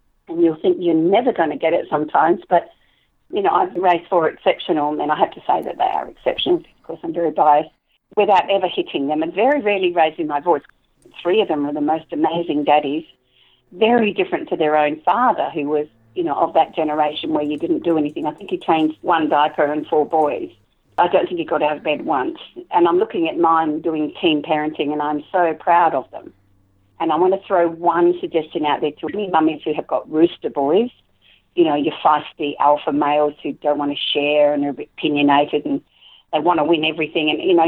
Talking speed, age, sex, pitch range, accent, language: 225 wpm, 50-69, female, 150-185 Hz, Australian, English